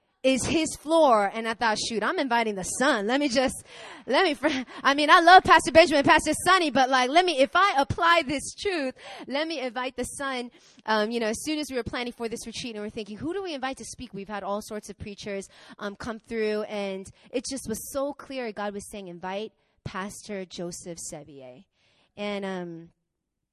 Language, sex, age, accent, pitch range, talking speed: English, female, 20-39, American, 210-275 Hz, 215 wpm